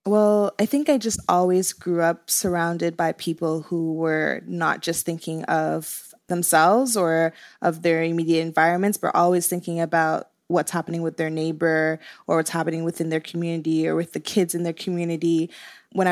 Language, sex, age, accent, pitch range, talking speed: English, female, 20-39, American, 170-200 Hz, 170 wpm